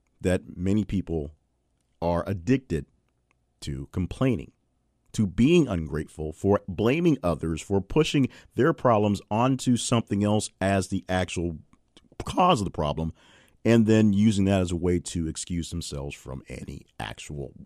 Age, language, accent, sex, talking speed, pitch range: 40-59, English, American, male, 135 wpm, 85-110 Hz